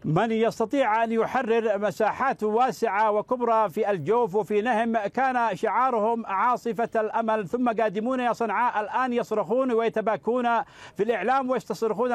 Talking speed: 125 wpm